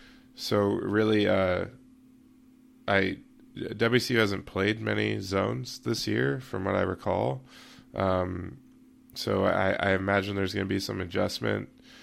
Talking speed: 130 wpm